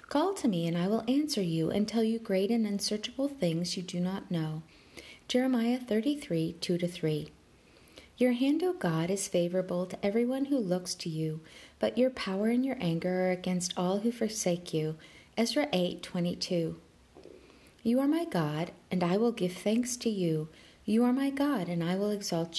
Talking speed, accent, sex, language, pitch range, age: 180 wpm, American, female, English, 170-230 Hz, 40-59